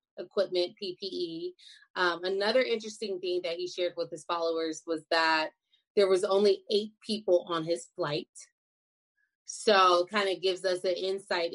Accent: American